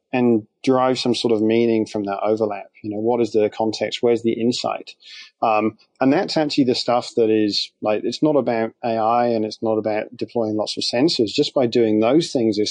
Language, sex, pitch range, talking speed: English, male, 110-125 Hz, 210 wpm